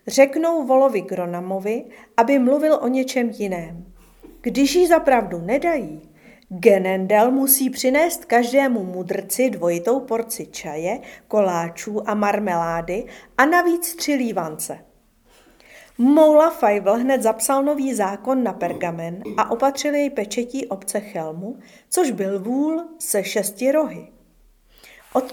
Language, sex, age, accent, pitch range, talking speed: Czech, female, 50-69, native, 190-270 Hz, 115 wpm